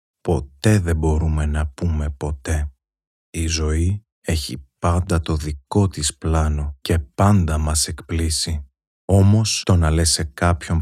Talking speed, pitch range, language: 130 wpm, 80-90 Hz, Greek